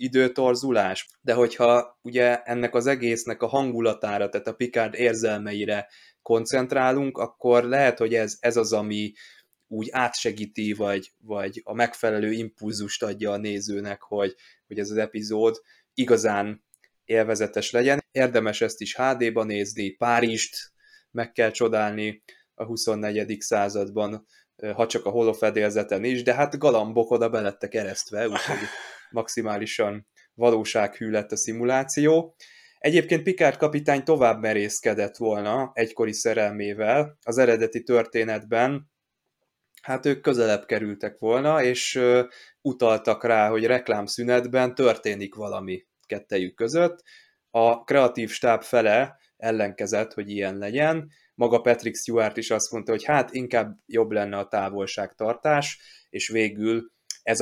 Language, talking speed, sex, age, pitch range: Hungarian, 125 wpm, male, 20-39, 105-125 Hz